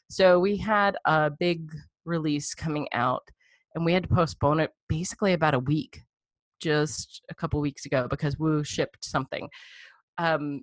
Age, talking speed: 30-49, 165 wpm